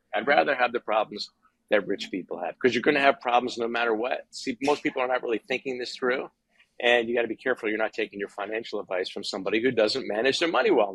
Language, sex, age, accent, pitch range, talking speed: English, male, 50-69, American, 115-140 Hz, 260 wpm